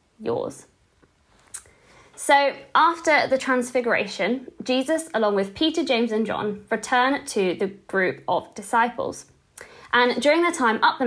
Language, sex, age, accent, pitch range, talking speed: English, female, 20-39, British, 210-290 Hz, 130 wpm